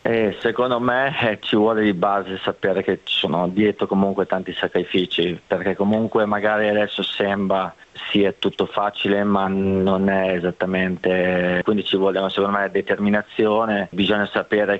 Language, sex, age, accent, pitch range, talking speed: Italian, male, 20-39, native, 100-110 Hz, 150 wpm